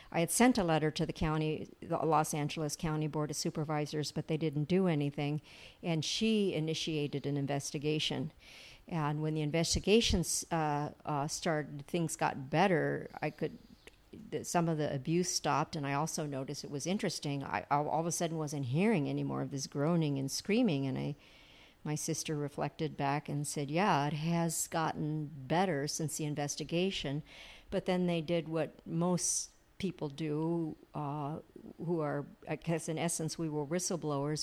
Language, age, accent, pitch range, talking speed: English, 50-69, American, 150-170 Hz, 175 wpm